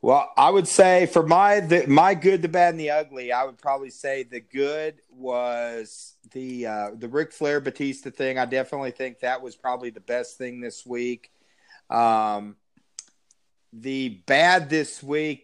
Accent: American